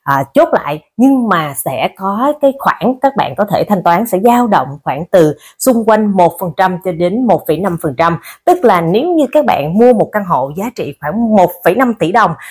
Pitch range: 175-250 Hz